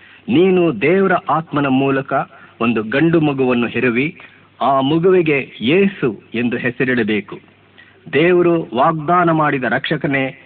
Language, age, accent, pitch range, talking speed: Kannada, 50-69, native, 125-165 Hz, 100 wpm